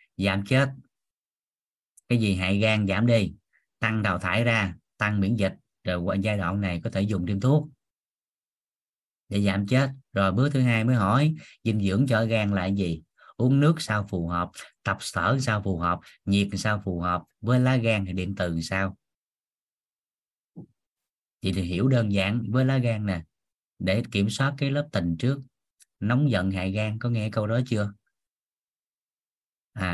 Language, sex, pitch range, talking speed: Vietnamese, male, 95-125 Hz, 175 wpm